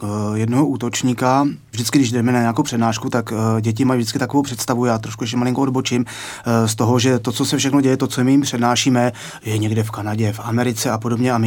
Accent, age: native, 30-49